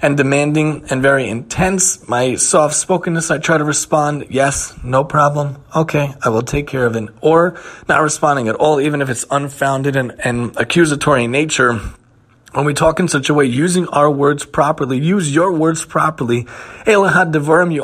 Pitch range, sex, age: 140-170 Hz, male, 30-49